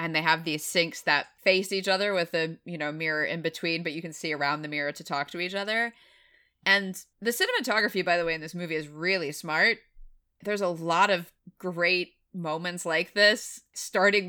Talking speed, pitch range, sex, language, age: 205 wpm, 170-205 Hz, female, English, 20-39